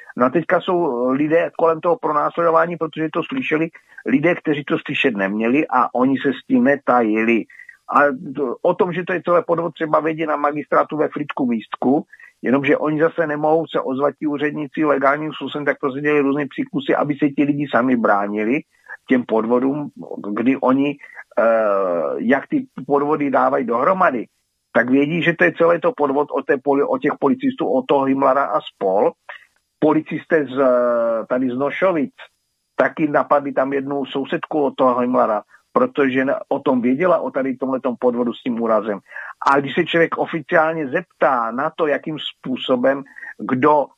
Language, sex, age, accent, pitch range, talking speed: Czech, male, 50-69, native, 130-160 Hz, 165 wpm